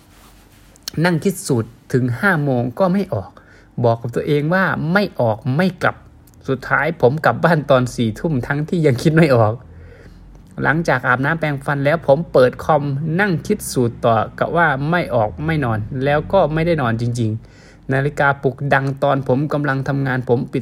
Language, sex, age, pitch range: Thai, male, 20-39, 125-160 Hz